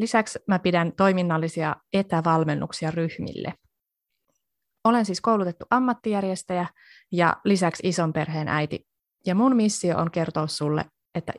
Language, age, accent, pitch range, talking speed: Finnish, 30-49, native, 160-205 Hz, 115 wpm